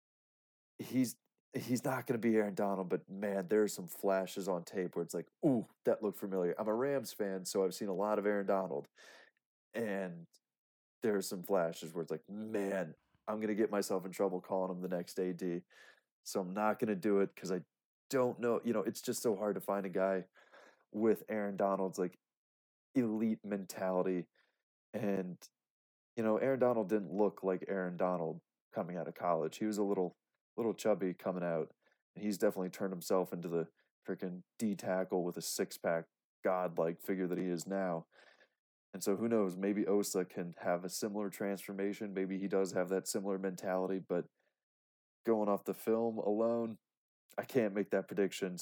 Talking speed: 190 wpm